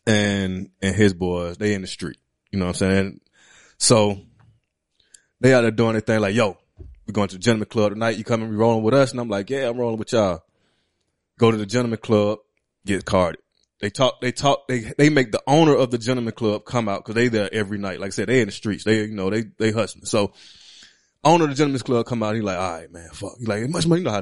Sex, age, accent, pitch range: male, 20-39, American, 100-125 Hz